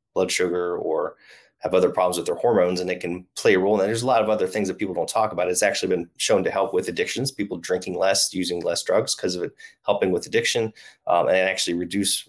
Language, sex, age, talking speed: English, male, 30-49, 255 wpm